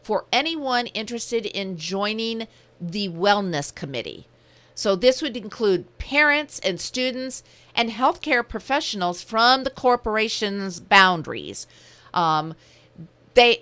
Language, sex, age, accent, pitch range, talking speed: English, female, 50-69, American, 175-235 Hz, 105 wpm